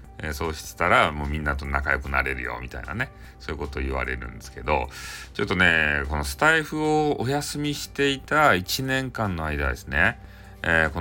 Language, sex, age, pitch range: Japanese, male, 40-59, 80-125 Hz